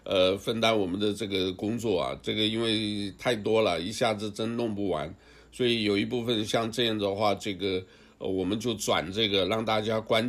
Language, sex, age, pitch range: Chinese, male, 60-79, 100-115 Hz